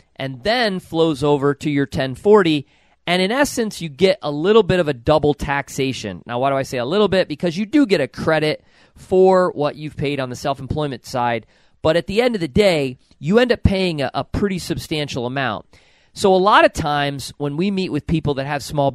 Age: 40-59